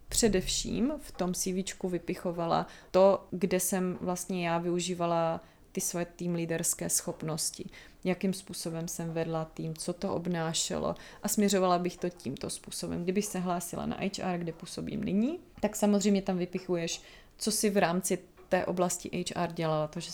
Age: 30-49